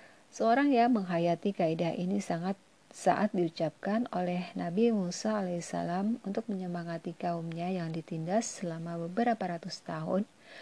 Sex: female